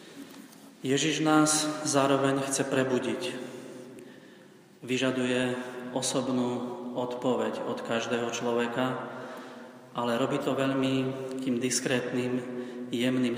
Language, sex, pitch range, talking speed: Slovak, male, 125-135 Hz, 80 wpm